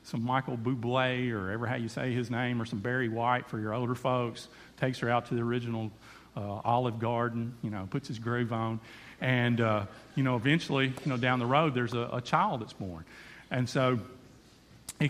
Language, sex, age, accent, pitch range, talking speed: English, male, 40-59, American, 120-155 Hz, 205 wpm